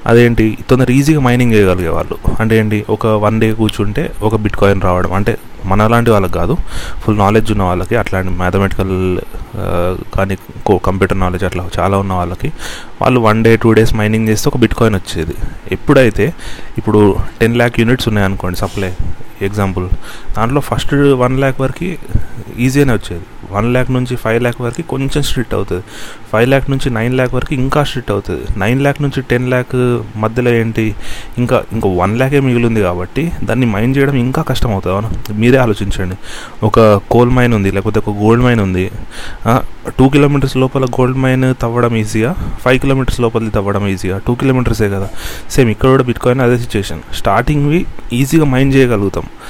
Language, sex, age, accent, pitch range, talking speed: Telugu, male, 30-49, native, 100-125 Hz, 160 wpm